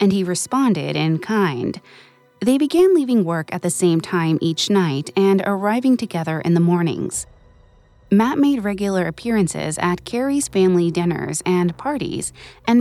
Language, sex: English, female